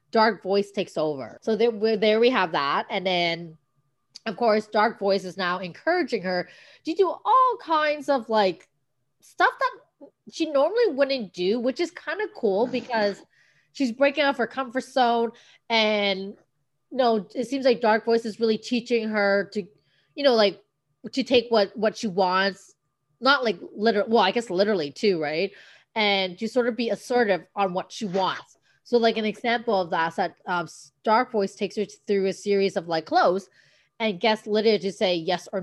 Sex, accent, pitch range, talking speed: female, American, 180-240 Hz, 185 wpm